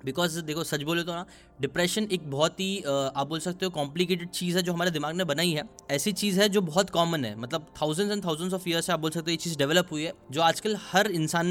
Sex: male